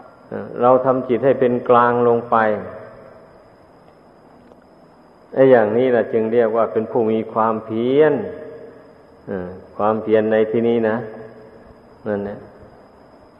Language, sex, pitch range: Thai, male, 110-130 Hz